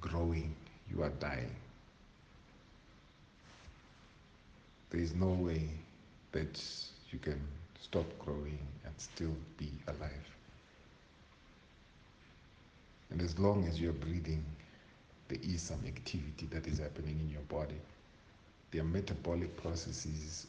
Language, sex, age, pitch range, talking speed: English, male, 50-69, 75-90 Hz, 110 wpm